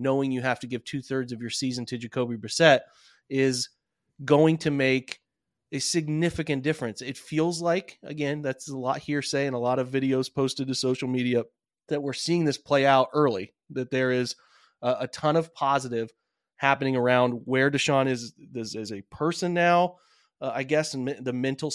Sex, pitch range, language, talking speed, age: male, 125-145 Hz, English, 185 wpm, 30-49